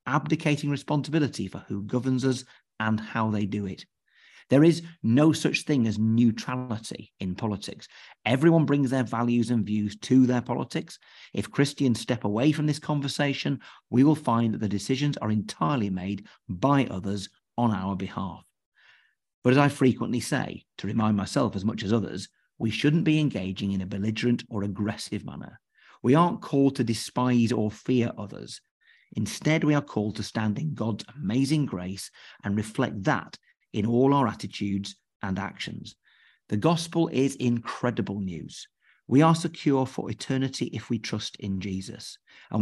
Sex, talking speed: male, 160 wpm